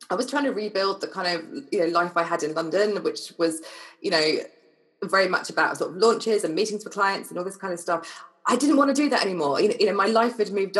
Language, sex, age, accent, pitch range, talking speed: English, female, 20-39, British, 170-235 Hz, 265 wpm